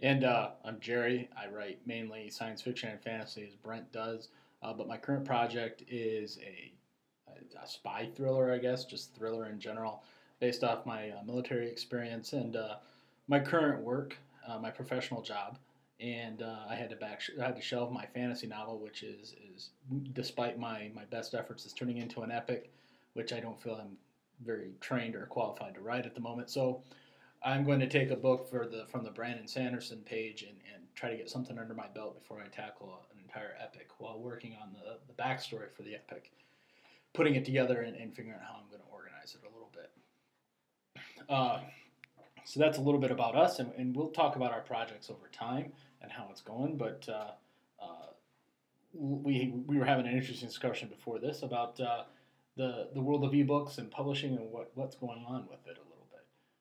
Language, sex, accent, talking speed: English, male, American, 200 wpm